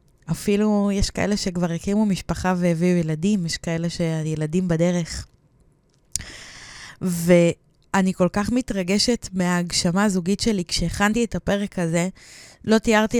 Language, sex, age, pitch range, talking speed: Hebrew, female, 20-39, 175-210 Hz, 115 wpm